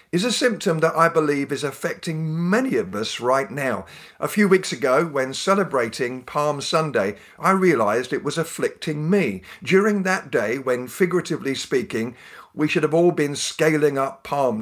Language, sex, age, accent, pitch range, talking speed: English, male, 50-69, British, 130-180 Hz, 170 wpm